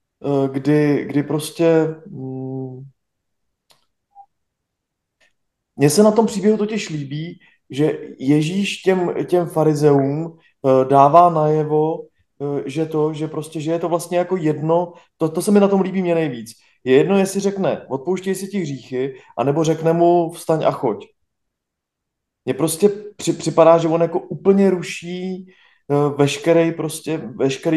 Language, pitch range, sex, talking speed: Czech, 140-170 Hz, male, 130 wpm